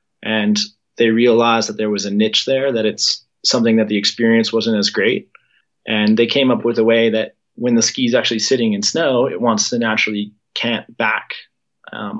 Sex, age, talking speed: male, 20-39, 200 wpm